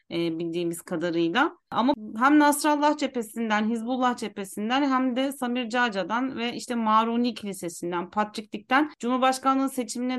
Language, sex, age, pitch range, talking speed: Turkish, female, 40-59, 215-275 Hz, 120 wpm